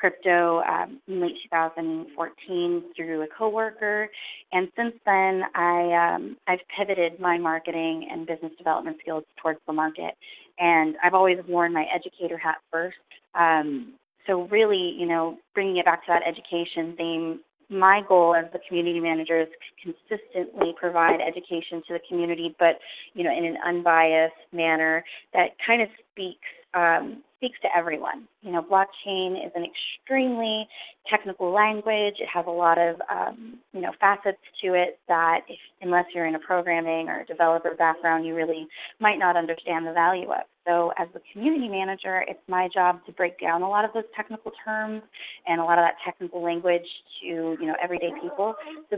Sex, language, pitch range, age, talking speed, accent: female, English, 165-195 Hz, 20-39, 175 wpm, American